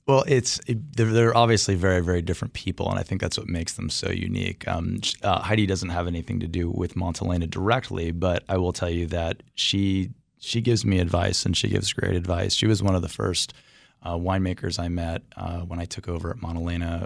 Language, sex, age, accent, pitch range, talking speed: English, male, 20-39, American, 85-100 Hz, 220 wpm